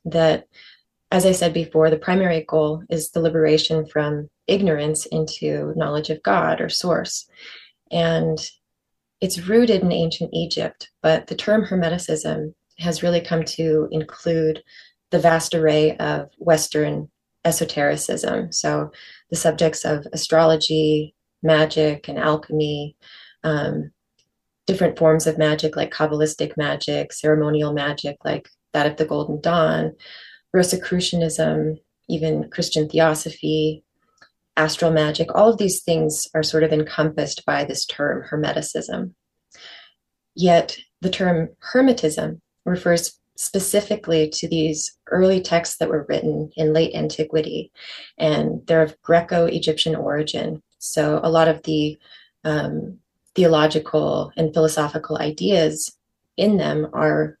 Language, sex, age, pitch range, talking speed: English, female, 20-39, 155-165 Hz, 120 wpm